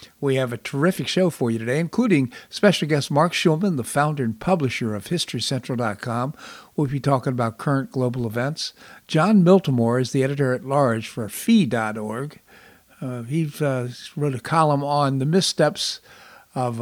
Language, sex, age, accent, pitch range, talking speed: English, male, 60-79, American, 120-150 Hz, 150 wpm